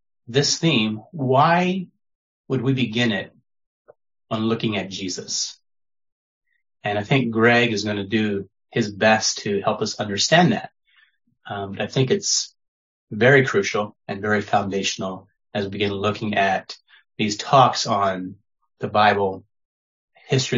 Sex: male